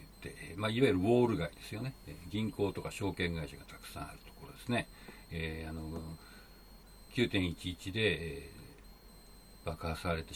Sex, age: male, 60-79